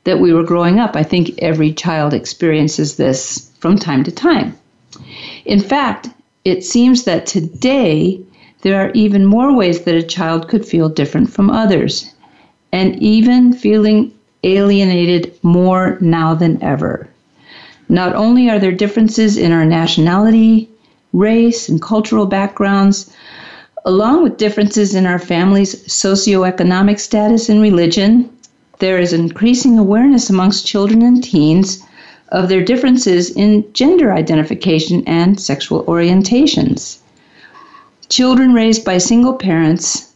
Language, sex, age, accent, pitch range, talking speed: English, female, 50-69, American, 175-225 Hz, 130 wpm